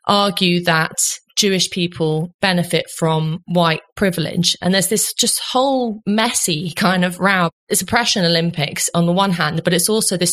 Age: 20-39